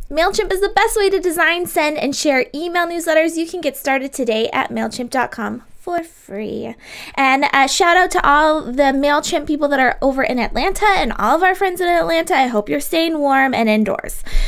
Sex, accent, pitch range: female, American, 255-335 Hz